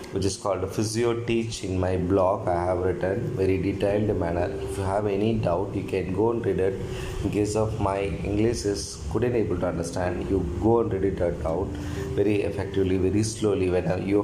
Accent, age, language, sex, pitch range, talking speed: native, 20-39, Tamil, male, 95-110 Hz, 200 wpm